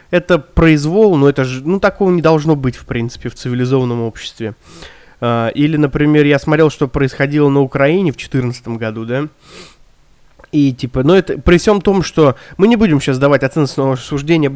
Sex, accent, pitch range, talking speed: male, native, 130-170 Hz, 170 wpm